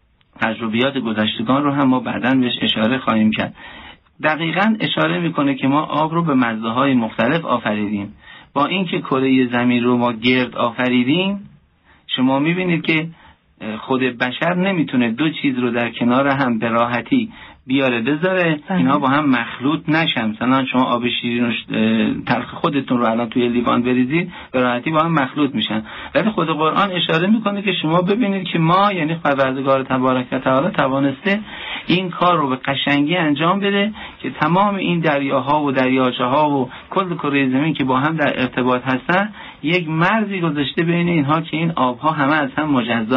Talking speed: 165 wpm